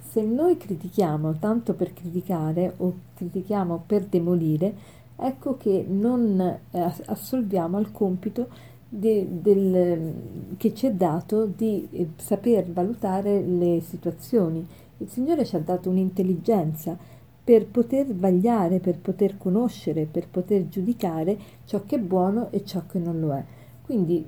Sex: female